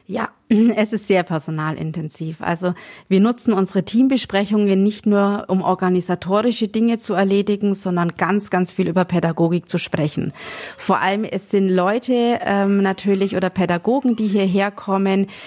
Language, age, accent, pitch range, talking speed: German, 30-49, German, 180-210 Hz, 145 wpm